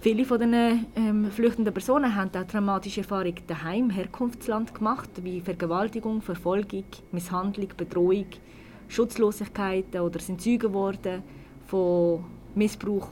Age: 20-39